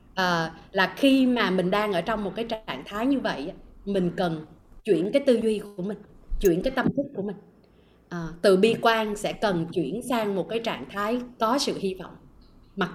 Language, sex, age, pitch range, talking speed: Vietnamese, female, 20-39, 185-235 Hz, 210 wpm